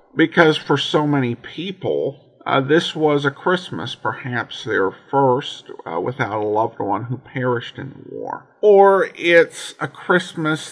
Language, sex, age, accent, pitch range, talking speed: English, male, 50-69, American, 125-165 Hz, 150 wpm